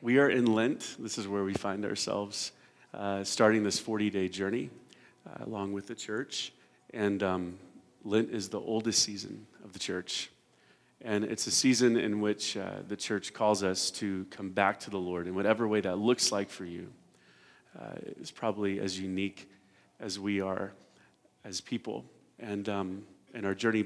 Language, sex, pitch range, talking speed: English, male, 95-105 Hz, 175 wpm